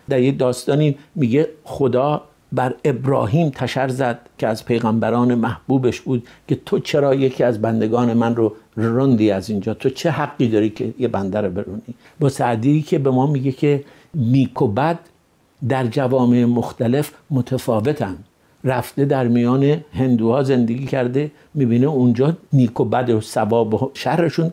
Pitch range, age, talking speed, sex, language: 115-145 Hz, 60-79, 150 wpm, male, Persian